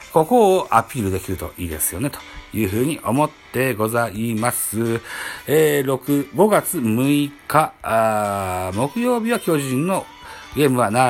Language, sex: Japanese, male